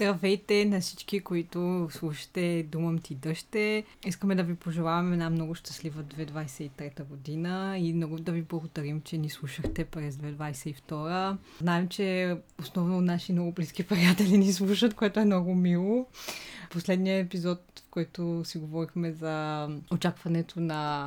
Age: 20-39